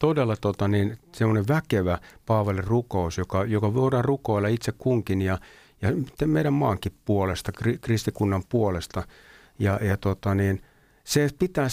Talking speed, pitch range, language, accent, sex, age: 135 wpm, 100-140 Hz, Finnish, native, male, 60-79